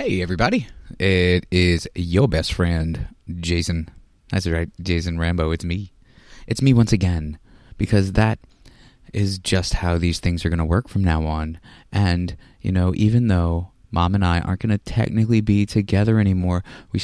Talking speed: 170 wpm